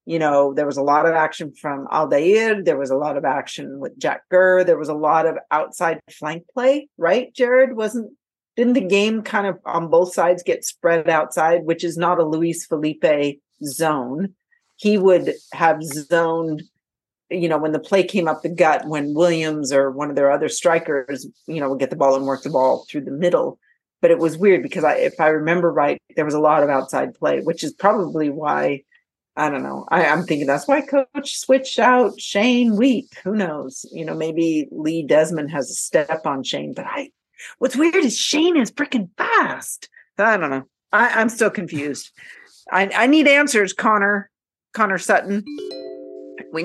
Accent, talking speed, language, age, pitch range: American, 195 wpm, English, 40-59, 150-210 Hz